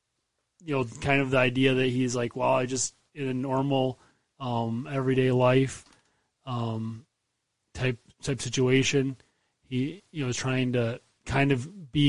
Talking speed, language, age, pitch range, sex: 155 wpm, English, 30-49, 125-145 Hz, male